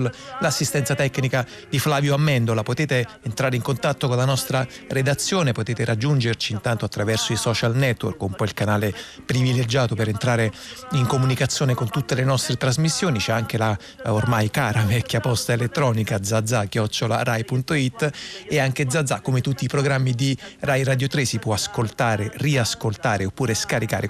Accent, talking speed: native, 155 wpm